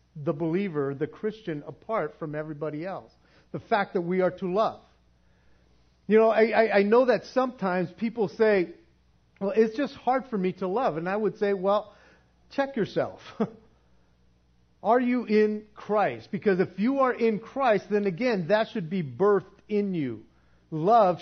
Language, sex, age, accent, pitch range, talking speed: English, male, 50-69, American, 160-220 Hz, 165 wpm